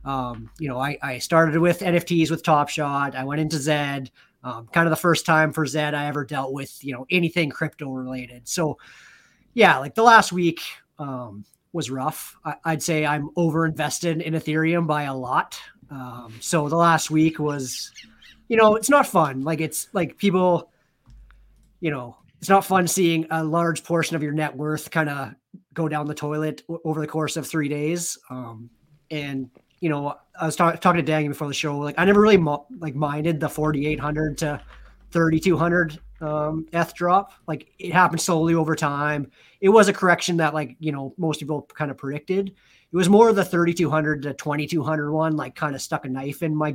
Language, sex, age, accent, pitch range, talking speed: English, male, 30-49, American, 145-170 Hz, 200 wpm